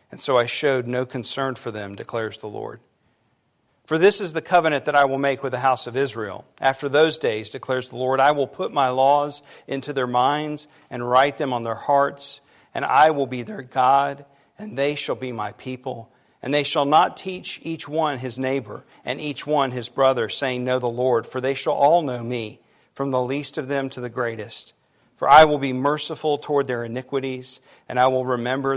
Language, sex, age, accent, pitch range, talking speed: English, male, 50-69, American, 125-145 Hz, 210 wpm